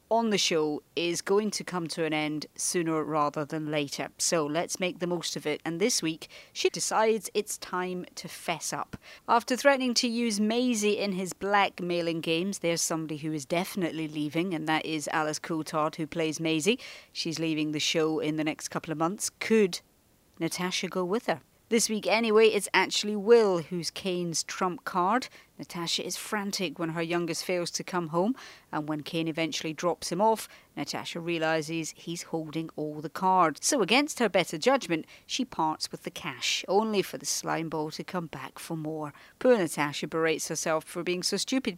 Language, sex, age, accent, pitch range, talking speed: English, female, 40-59, British, 160-215 Hz, 190 wpm